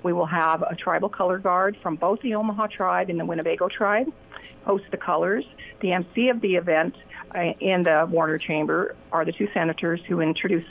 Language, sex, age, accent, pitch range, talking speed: English, female, 50-69, American, 165-195 Hz, 195 wpm